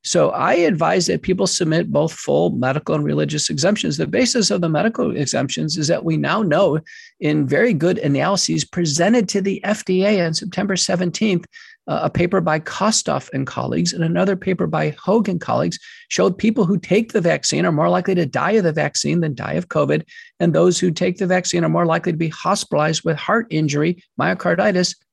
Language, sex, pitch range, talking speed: English, male, 165-205 Hz, 190 wpm